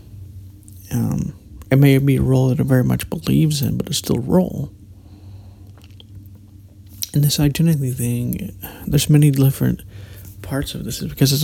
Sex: male